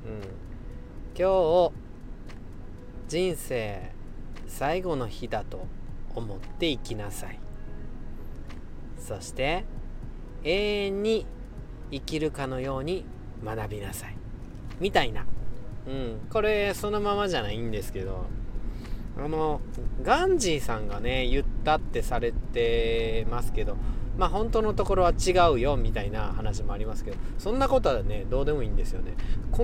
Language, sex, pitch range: Japanese, male, 105-135 Hz